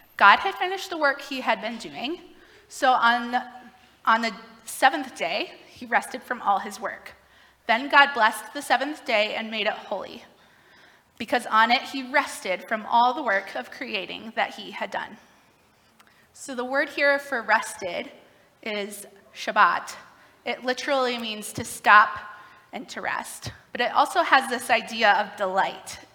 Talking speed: 160 wpm